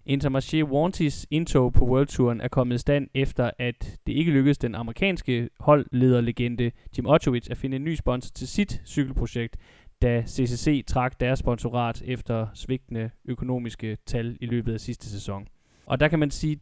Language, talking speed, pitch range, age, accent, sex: Danish, 170 wpm, 115-135 Hz, 20-39, native, male